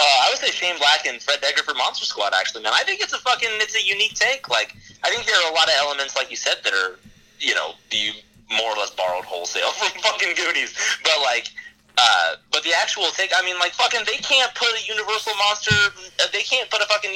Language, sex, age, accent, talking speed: English, male, 30-49, American, 245 wpm